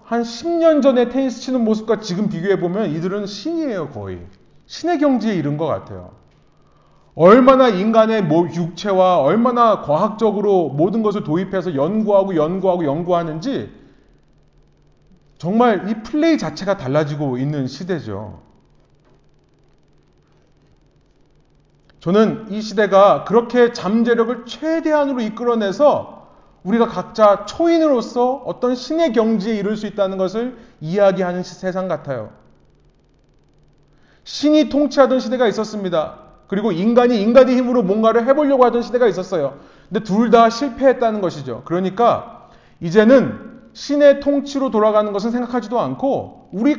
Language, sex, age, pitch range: Korean, male, 30-49, 175-245 Hz